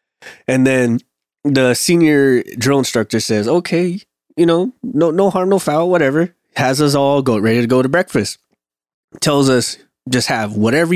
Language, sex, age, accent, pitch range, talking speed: English, male, 20-39, American, 115-150 Hz, 165 wpm